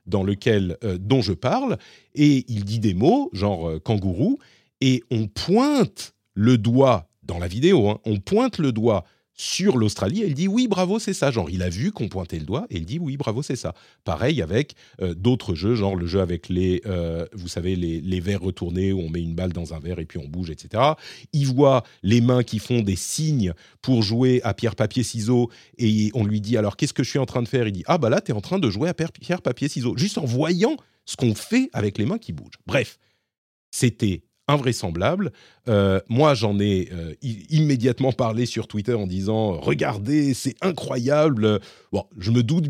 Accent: French